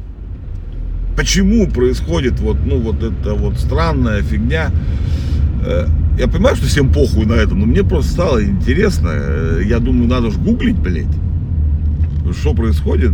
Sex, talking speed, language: male, 130 wpm, Russian